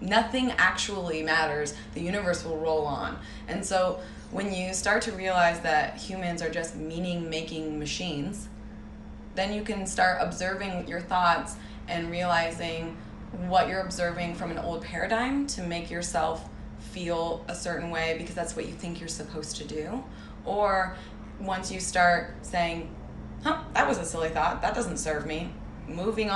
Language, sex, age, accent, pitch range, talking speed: English, female, 20-39, American, 155-185 Hz, 160 wpm